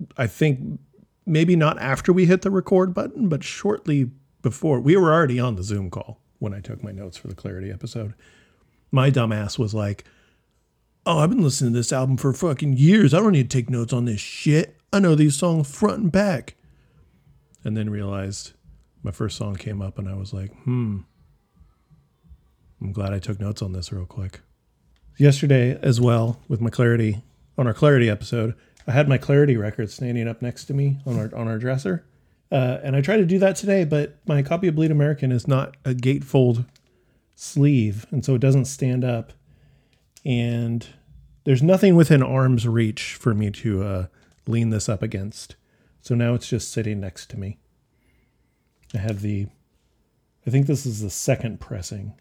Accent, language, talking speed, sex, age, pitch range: American, English, 185 wpm, male, 40-59, 105-140 Hz